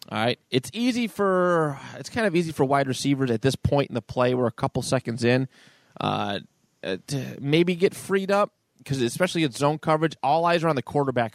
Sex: male